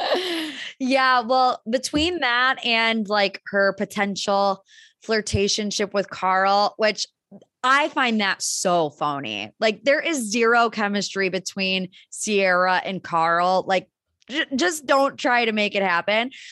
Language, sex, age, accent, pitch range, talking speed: English, female, 20-39, American, 200-270 Hz, 125 wpm